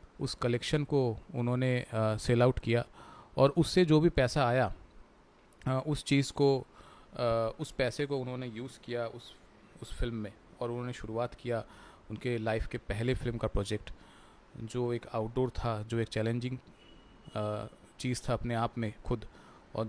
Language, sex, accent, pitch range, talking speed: Hindi, male, native, 115-135 Hz, 160 wpm